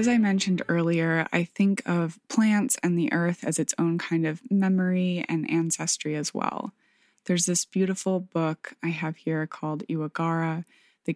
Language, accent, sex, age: English, American, female, 20-39